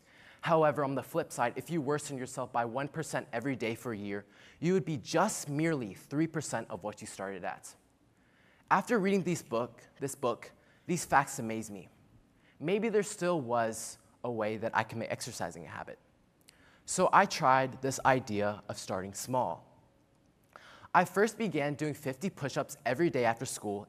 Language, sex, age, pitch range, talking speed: English, male, 20-39, 115-155 Hz, 170 wpm